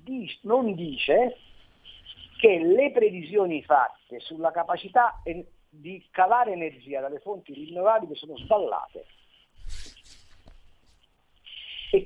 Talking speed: 85 wpm